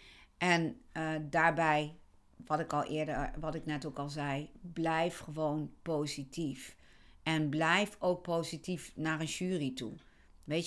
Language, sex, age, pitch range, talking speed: Dutch, female, 50-69, 150-175 Hz, 140 wpm